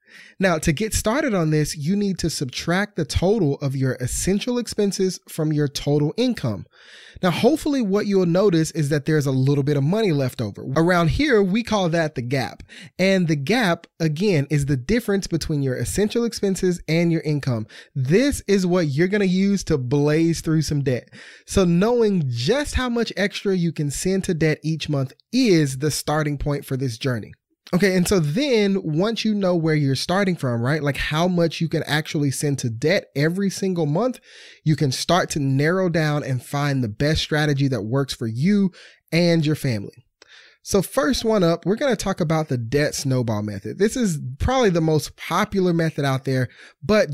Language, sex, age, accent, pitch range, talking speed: English, male, 20-39, American, 145-195 Hz, 195 wpm